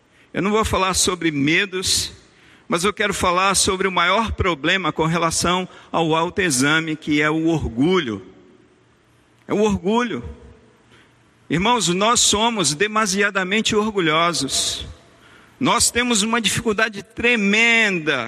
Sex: male